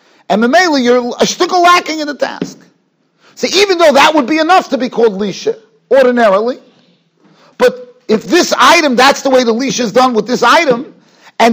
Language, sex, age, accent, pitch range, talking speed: English, male, 40-59, American, 210-295 Hz, 185 wpm